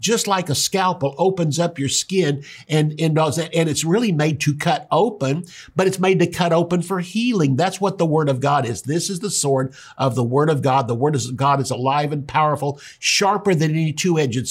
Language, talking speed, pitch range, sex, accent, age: English, 225 wpm, 130-165 Hz, male, American, 50-69